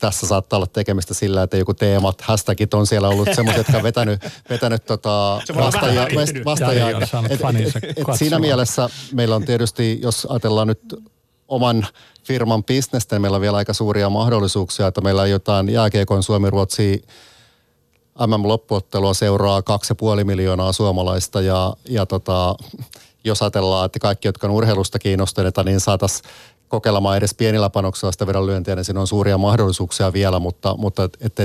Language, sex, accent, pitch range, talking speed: Finnish, male, native, 100-115 Hz, 155 wpm